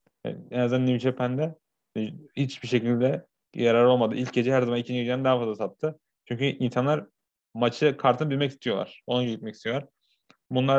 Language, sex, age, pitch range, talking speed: Turkish, male, 30-49, 115-135 Hz, 155 wpm